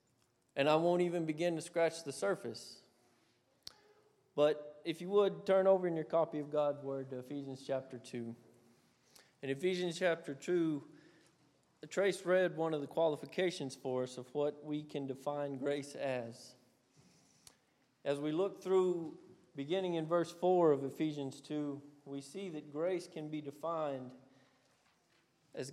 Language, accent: English, American